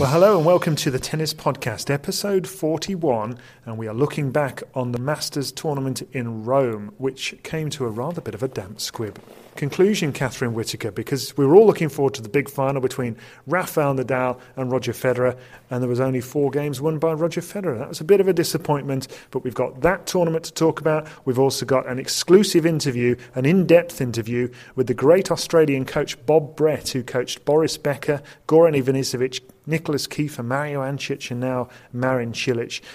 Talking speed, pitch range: 190 wpm, 125-150 Hz